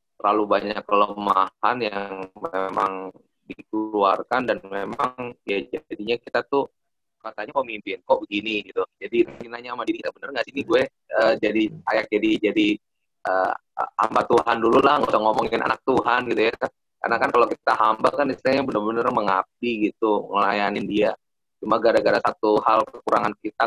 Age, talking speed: 20-39, 160 wpm